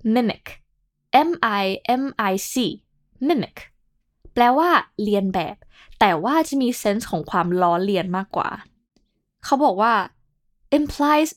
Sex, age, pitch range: female, 10-29, 185-270 Hz